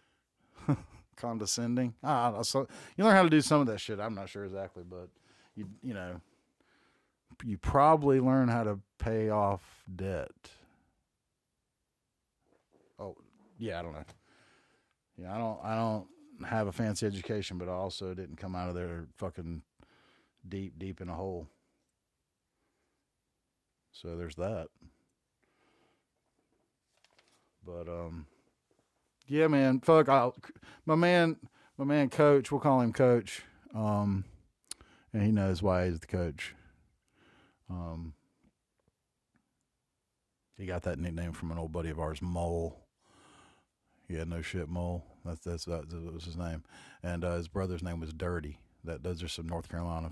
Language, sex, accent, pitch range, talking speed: English, male, American, 85-110 Hz, 145 wpm